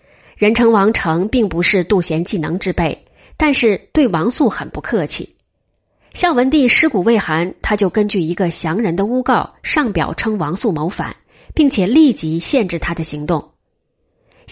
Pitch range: 170-240 Hz